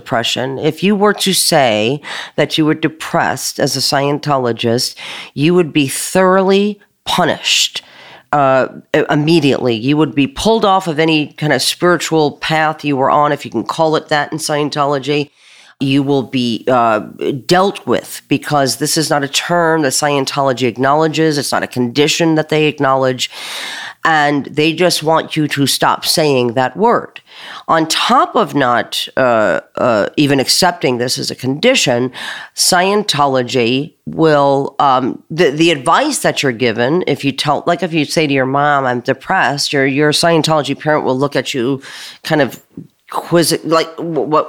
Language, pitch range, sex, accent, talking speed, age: English, 140-180 Hz, female, American, 165 wpm, 40-59